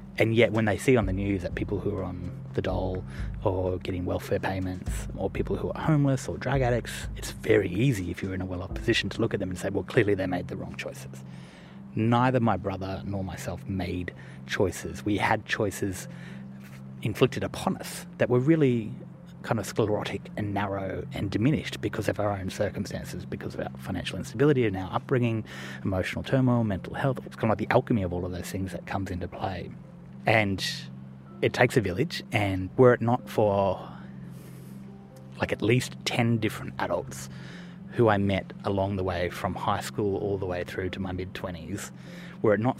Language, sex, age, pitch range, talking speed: English, male, 30-49, 90-110 Hz, 195 wpm